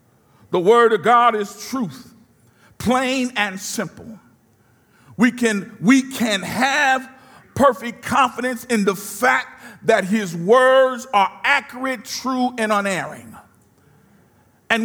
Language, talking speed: English, 110 wpm